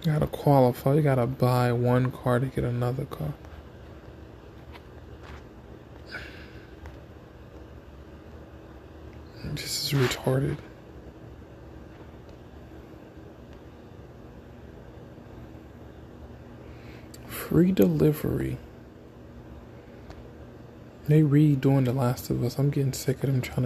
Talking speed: 75 wpm